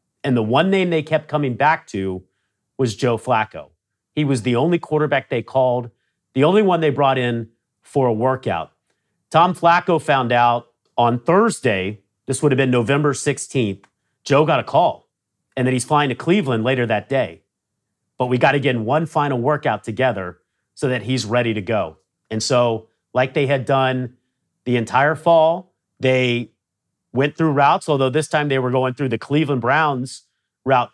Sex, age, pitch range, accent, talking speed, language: male, 40-59, 120-150 Hz, American, 180 wpm, English